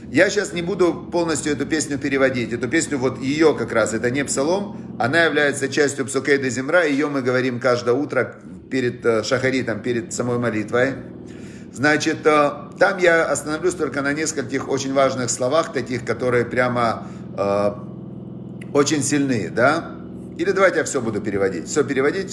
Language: Russian